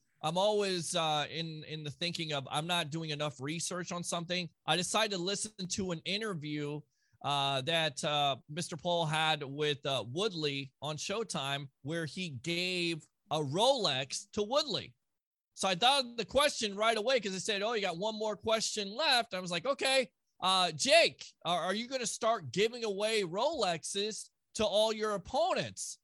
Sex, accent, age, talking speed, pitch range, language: male, American, 30-49, 175 wpm, 170-240 Hz, English